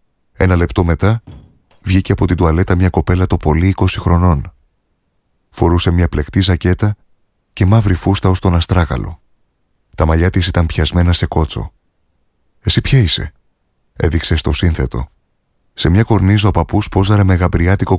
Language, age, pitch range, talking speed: Greek, 30-49, 75-95 Hz, 145 wpm